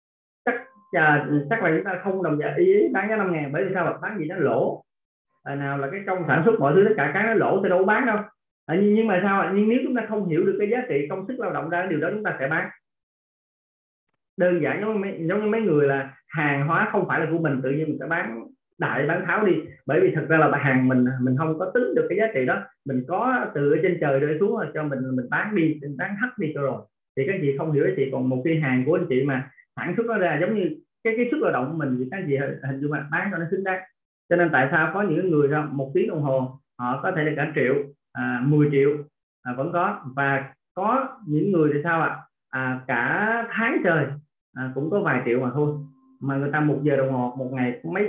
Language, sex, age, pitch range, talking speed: Vietnamese, male, 20-39, 140-195 Hz, 270 wpm